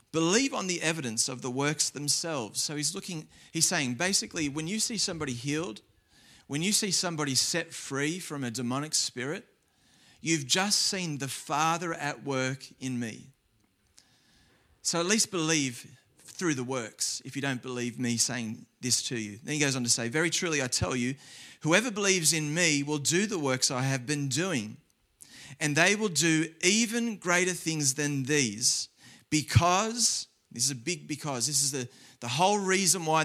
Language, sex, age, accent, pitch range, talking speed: English, male, 30-49, Australian, 130-175 Hz, 180 wpm